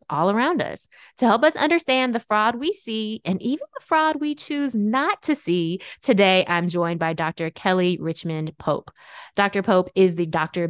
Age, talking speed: 20-39, 185 wpm